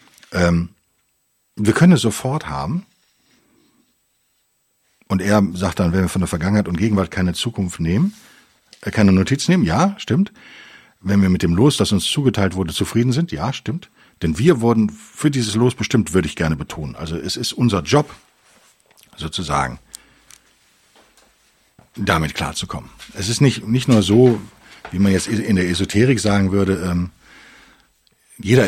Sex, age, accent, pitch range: male, 50-69, German, 90-120 Hz